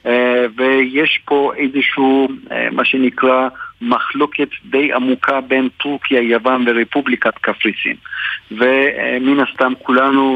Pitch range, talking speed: 125-150 Hz, 110 wpm